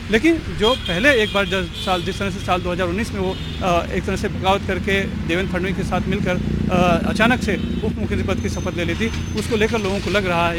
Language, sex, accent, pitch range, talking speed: Hindi, male, native, 180-205 Hz, 225 wpm